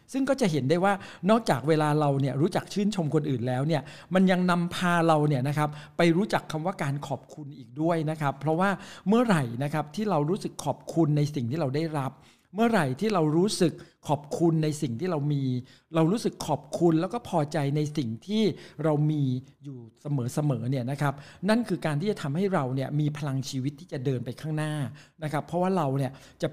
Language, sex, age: Thai, male, 60-79